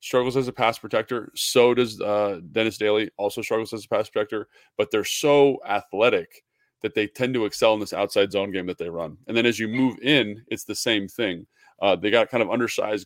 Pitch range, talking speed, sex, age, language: 100-125 Hz, 225 wpm, male, 20-39, English